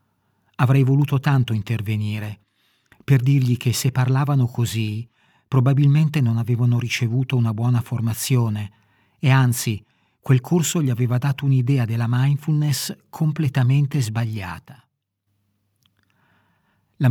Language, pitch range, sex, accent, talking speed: Italian, 110-135 Hz, male, native, 105 wpm